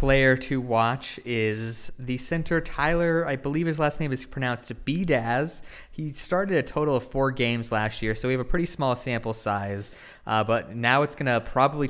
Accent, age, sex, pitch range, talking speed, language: American, 20-39, male, 110-135 Hz, 195 wpm, English